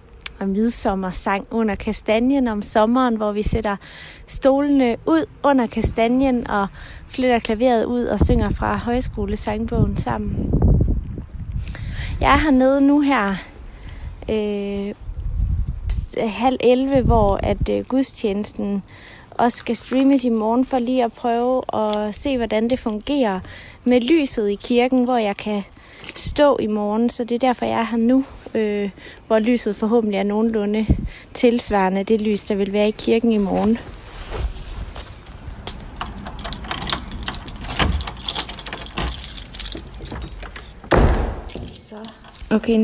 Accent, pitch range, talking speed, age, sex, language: native, 200-240 Hz, 115 wpm, 30-49, female, Danish